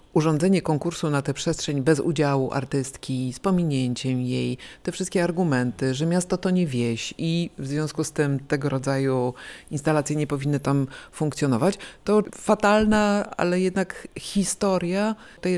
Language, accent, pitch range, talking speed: Polish, native, 135-190 Hz, 145 wpm